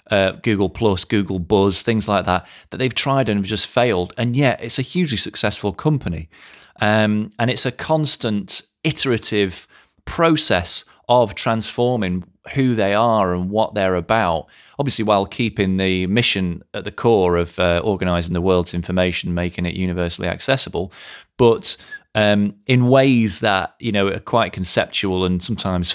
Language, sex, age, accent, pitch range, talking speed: English, male, 30-49, British, 95-120 Hz, 155 wpm